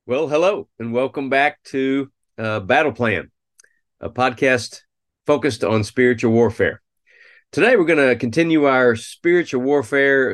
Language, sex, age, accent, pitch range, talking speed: English, male, 40-59, American, 110-140 Hz, 135 wpm